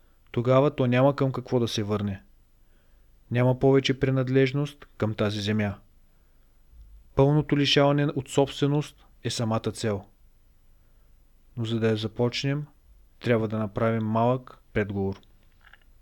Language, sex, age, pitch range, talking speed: Bulgarian, male, 30-49, 110-140 Hz, 115 wpm